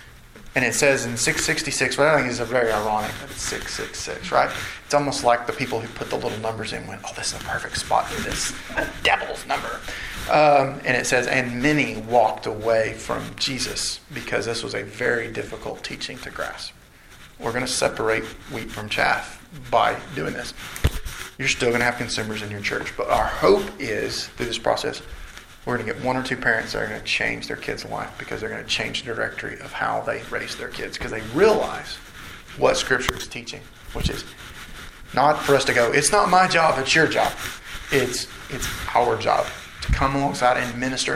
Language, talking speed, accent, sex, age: English, 205 wpm, American, male, 30-49